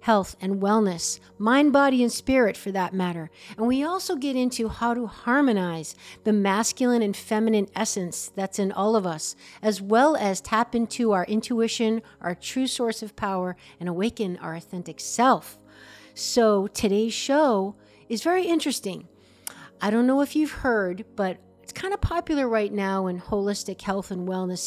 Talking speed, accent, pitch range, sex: 170 wpm, American, 185-225 Hz, female